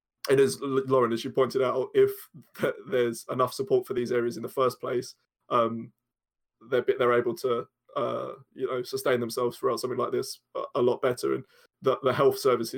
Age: 20-39